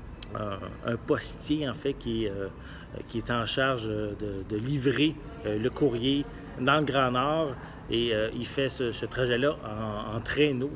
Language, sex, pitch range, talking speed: English, male, 110-145 Hz, 165 wpm